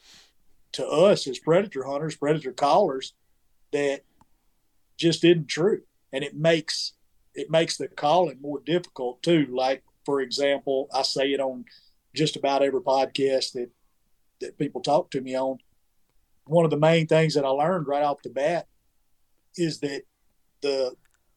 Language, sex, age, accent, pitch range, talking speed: English, male, 40-59, American, 135-160 Hz, 155 wpm